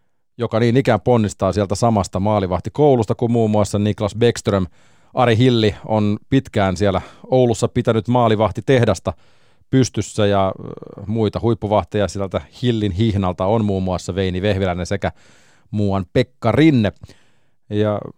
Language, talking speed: Finnish, 120 wpm